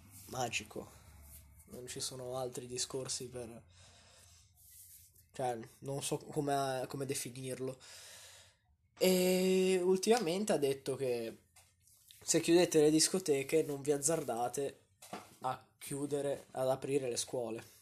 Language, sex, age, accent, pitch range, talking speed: Italian, male, 20-39, native, 120-150 Hz, 100 wpm